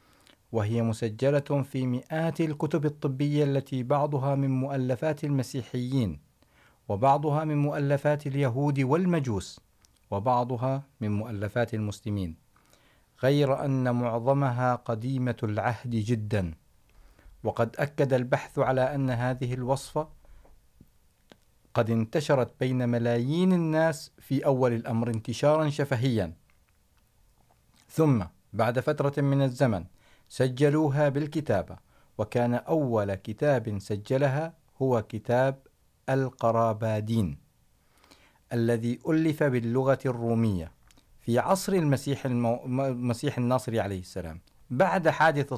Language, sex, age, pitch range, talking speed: Urdu, male, 50-69, 115-145 Hz, 90 wpm